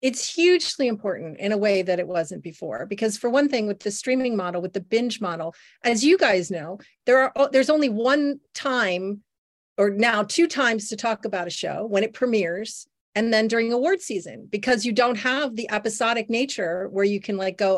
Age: 40-59